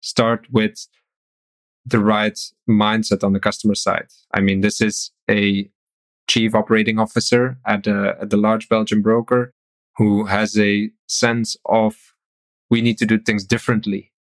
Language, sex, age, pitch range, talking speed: English, male, 20-39, 105-120 Hz, 140 wpm